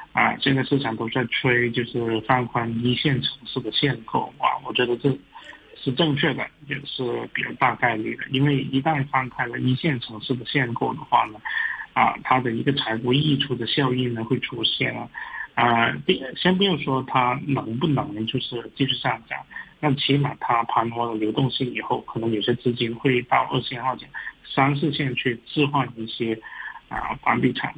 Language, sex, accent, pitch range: Chinese, male, native, 115-140 Hz